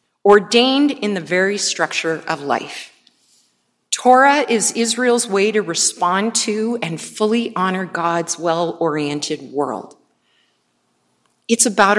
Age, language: 40-59, English